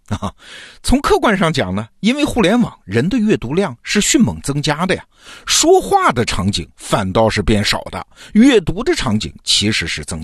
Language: Chinese